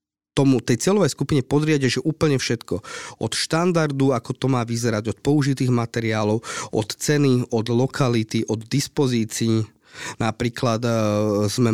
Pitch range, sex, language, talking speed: 115-145 Hz, male, Slovak, 125 wpm